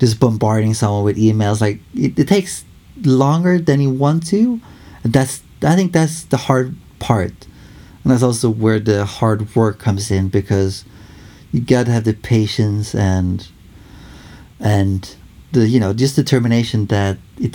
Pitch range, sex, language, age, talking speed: 105-125 Hz, male, English, 30-49, 155 wpm